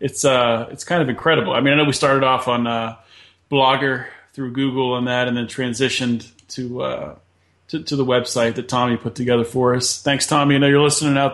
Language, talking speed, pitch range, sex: English, 220 wpm, 120-140 Hz, male